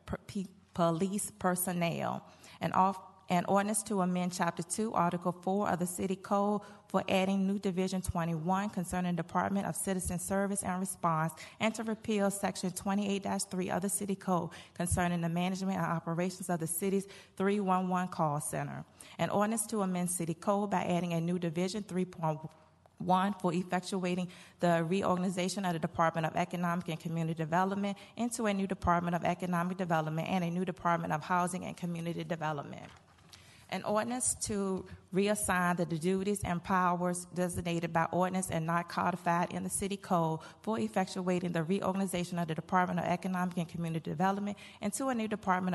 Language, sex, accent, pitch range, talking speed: English, female, American, 170-195 Hz, 165 wpm